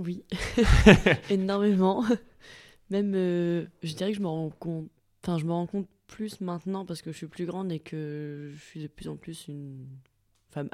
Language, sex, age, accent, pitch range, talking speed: French, female, 20-39, French, 150-185 Hz, 190 wpm